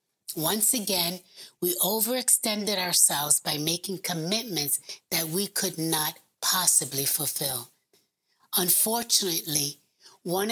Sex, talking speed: female, 90 wpm